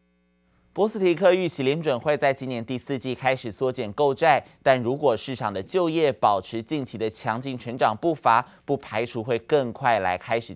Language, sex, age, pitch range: Chinese, male, 20-39, 110-140 Hz